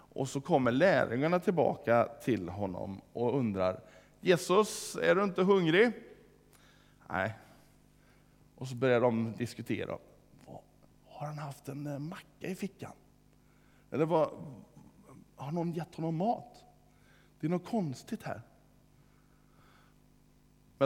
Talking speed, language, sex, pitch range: 110 wpm, Swedish, male, 115-165 Hz